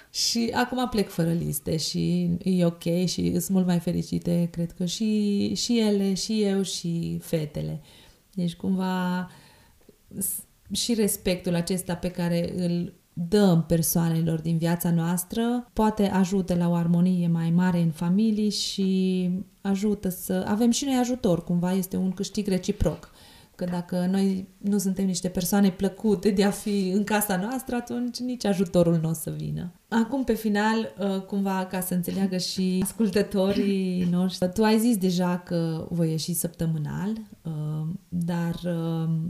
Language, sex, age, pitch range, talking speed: Romanian, female, 30-49, 170-200 Hz, 145 wpm